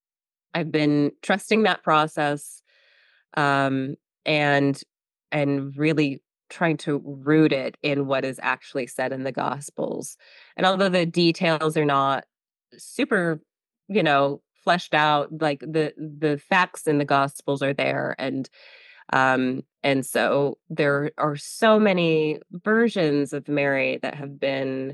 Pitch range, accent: 140-155 Hz, American